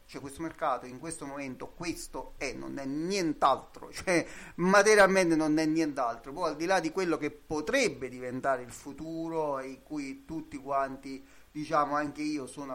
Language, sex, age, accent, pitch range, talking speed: Italian, male, 30-49, native, 135-160 Hz, 165 wpm